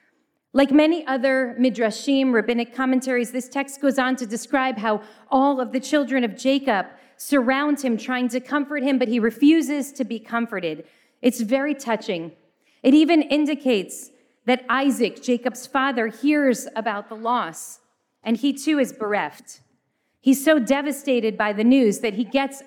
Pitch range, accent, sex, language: 220-270 Hz, American, female, English